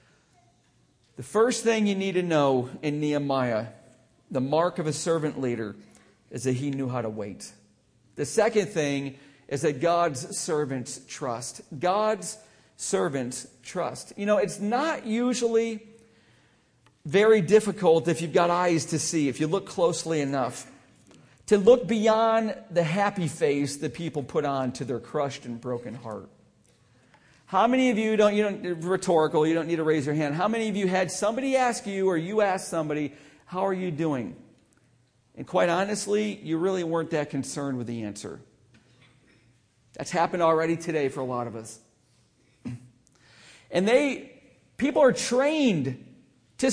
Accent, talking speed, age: American, 160 wpm, 40-59